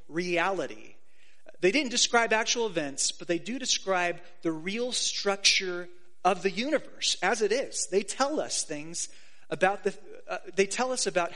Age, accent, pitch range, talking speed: 30-49, American, 150-200 Hz, 160 wpm